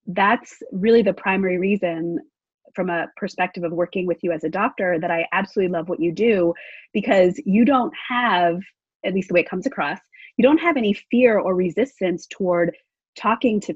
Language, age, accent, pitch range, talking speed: English, 30-49, American, 175-220 Hz, 190 wpm